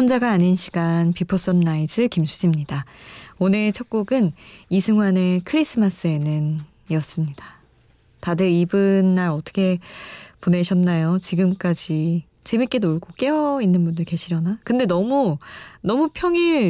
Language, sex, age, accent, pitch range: Korean, female, 20-39, native, 170-225 Hz